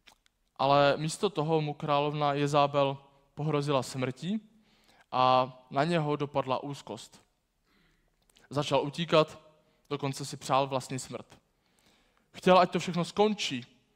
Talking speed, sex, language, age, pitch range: 110 wpm, male, Czech, 20-39, 135-170 Hz